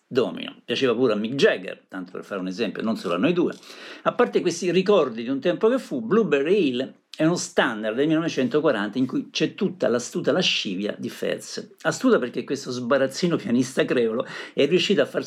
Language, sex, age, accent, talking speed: Italian, male, 50-69, native, 195 wpm